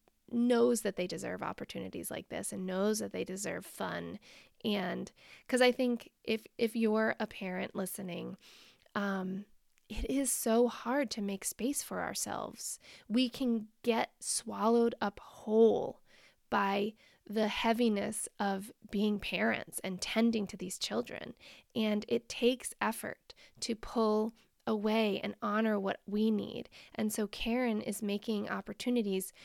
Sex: female